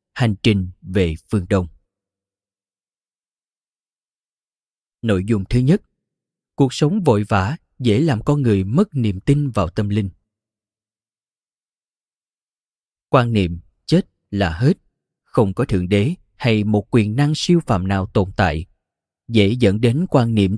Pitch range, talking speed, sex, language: 100-135 Hz, 135 wpm, male, Vietnamese